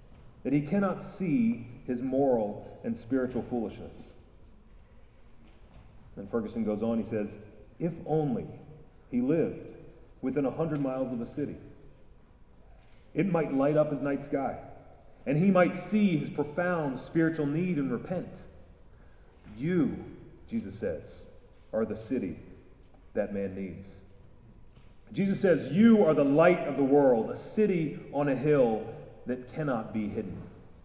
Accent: American